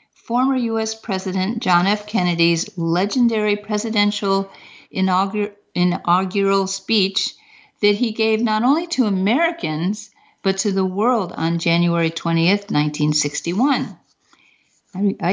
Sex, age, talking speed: female, 50-69, 100 wpm